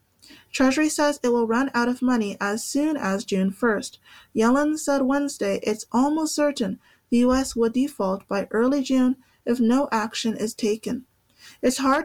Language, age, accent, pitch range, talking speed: English, 30-49, American, 215-265 Hz, 165 wpm